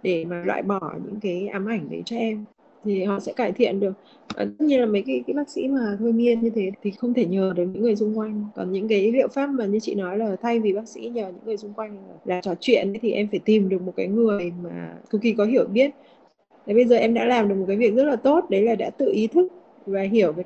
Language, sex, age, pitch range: Vietnamese, female, 20-39, 195-235 Hz